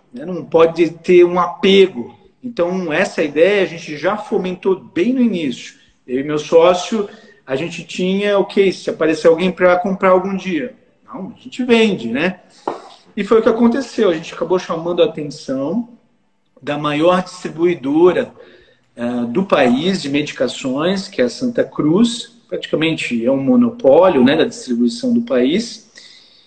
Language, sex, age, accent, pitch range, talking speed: Portuguese, male, 40-59, Brazilian, 155-215 Hz, 155 wpm